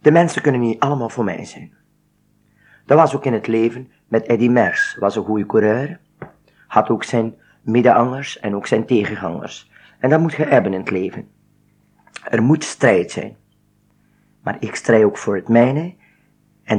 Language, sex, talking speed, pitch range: Dutch, male, 175 wpm, 105-130 Hz